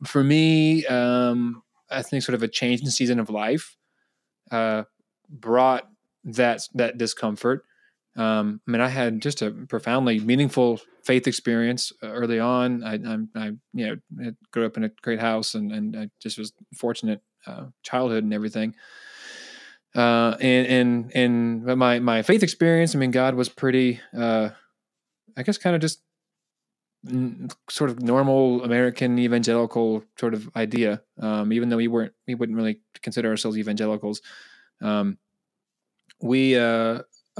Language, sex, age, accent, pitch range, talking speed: English, male, 20-39, American, 115-130 Hz, 150 wpm